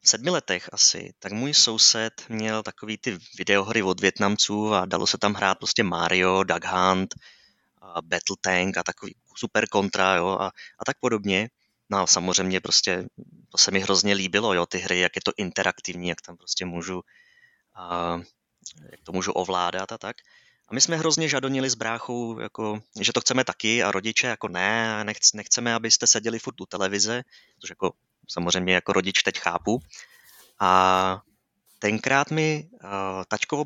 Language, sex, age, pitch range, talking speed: Czech, male, 20-39, 95-120 Hz, 170 wpm